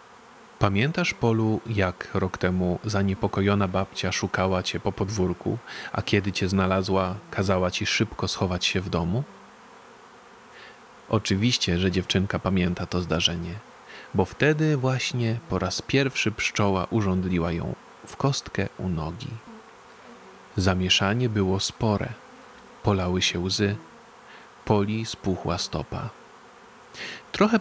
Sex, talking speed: male, 110 wpm